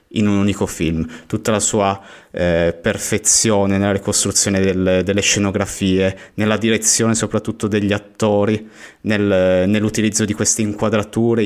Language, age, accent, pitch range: Italian, 30-49, native, 95-110 Hz